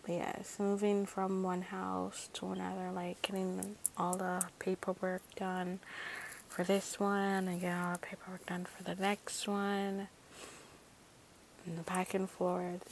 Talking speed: 150 wpm